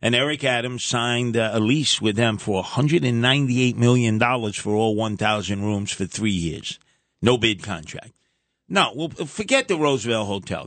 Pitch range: 115-160 Hz